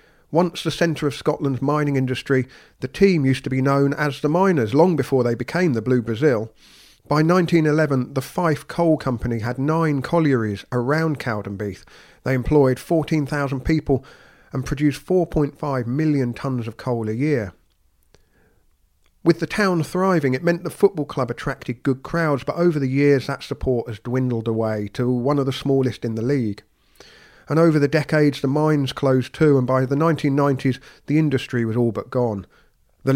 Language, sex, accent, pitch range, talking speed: English, male, British, 125-155 Hz, 170 wpm